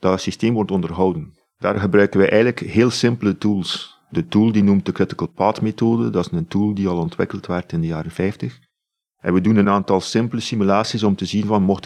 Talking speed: 220 wpm